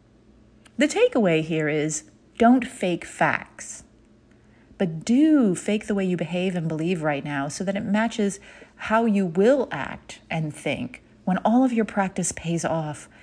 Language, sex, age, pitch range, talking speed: English, female, 40-59, 155-230 Hz, 160 wpm